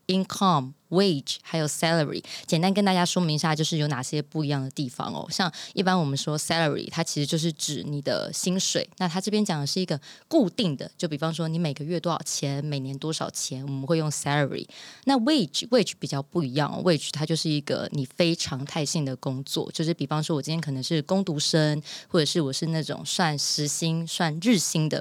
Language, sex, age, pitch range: Chinese, female, 20-39, 145-175 Hz